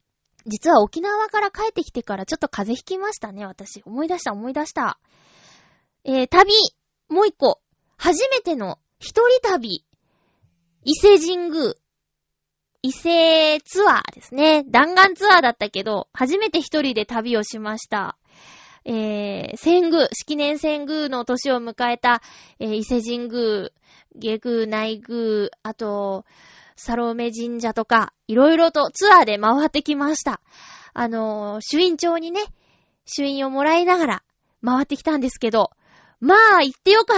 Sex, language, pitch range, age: female, Japanese, 220-340 Hz, 20-39